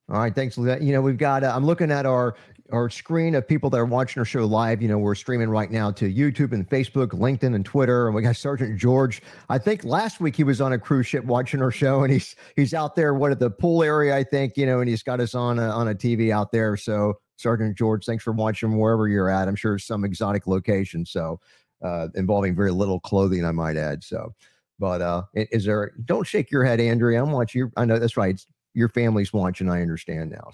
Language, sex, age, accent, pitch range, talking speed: English, male, 50-69, American, 105-135 Hz, 240 wpm